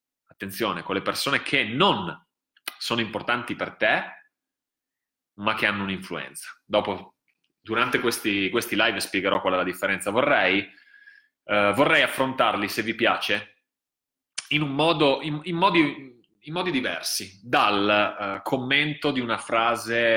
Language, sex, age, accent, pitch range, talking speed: Italian, male, 30-49, native, 100-150 Hz, 135 wpm